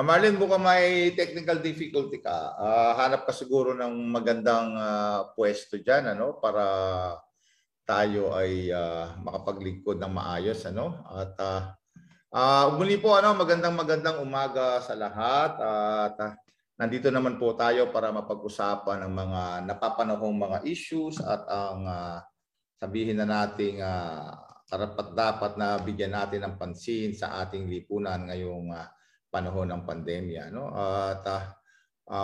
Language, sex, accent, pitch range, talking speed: Filipino, male, native, 95-120 Hz, 135 wpm